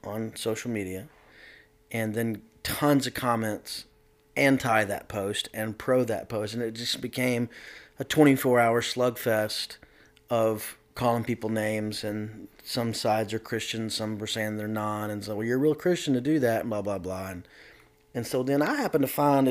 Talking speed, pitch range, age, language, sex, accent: 180 wpm, 110-145 Hz, 30-49, English, male, American